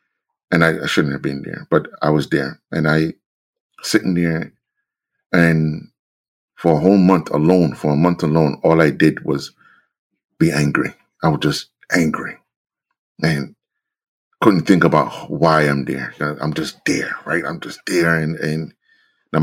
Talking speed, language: 160 wpm, English